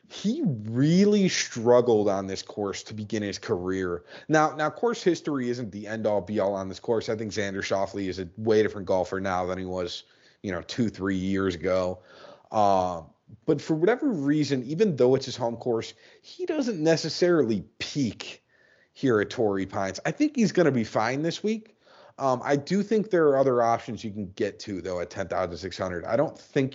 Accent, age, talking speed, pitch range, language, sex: American, 30-49, 205 wpm, 100-140 Hz, English, male